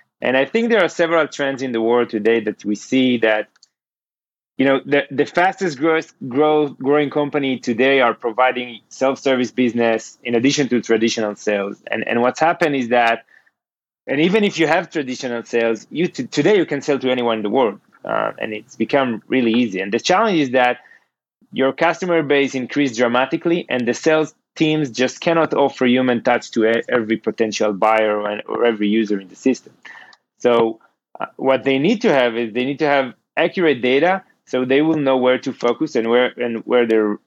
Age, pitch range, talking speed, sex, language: 30-49, 120-150 Hz, 190 wpm, male, English